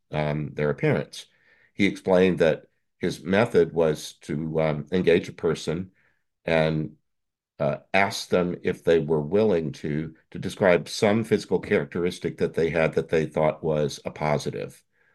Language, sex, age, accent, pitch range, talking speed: English, male, 50-69, American, 75-90 Hz, 145 wpm